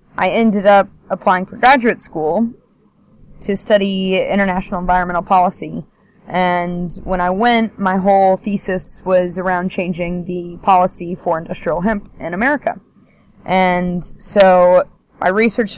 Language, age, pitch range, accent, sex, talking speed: English, 20-39, 180-200 Hz, American, female, 125 wpm